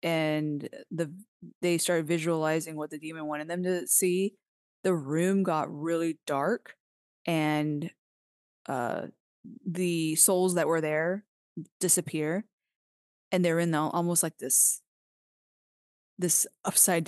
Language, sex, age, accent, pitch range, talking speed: English, female, 20-39, American, 155-185 Hz, 120 wpm